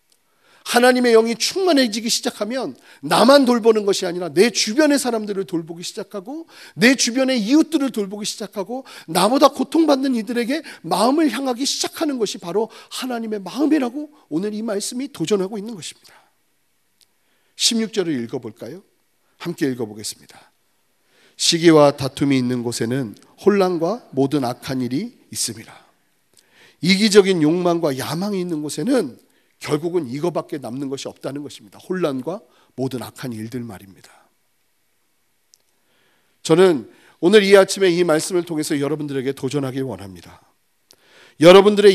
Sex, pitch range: male, 150-240 Hz